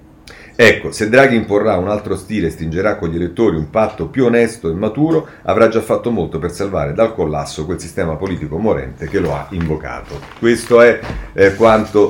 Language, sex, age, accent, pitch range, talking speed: Italian, male, 40-59, native, 85-130 Hz, 190 wpm